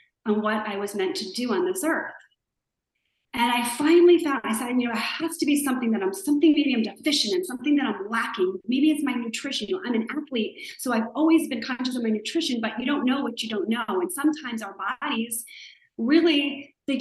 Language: English